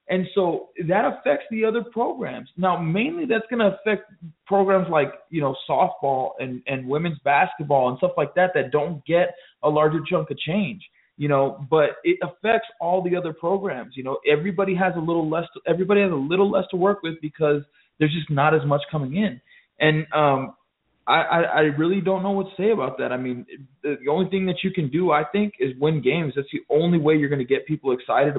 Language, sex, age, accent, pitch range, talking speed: English, male, 20-39, American, 145-185 Hz, 220 wpm